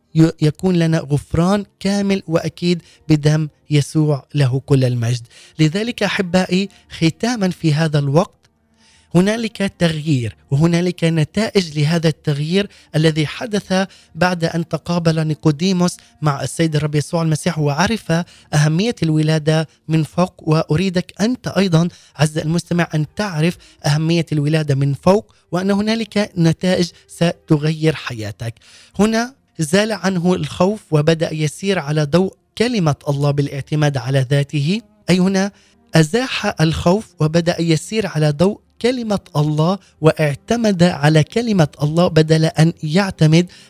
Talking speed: 115 wpm